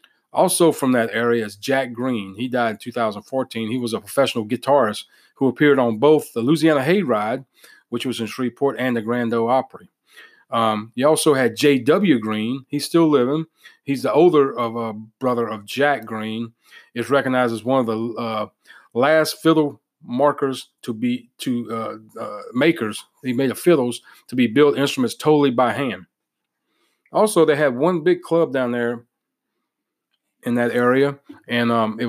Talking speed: 170 wpm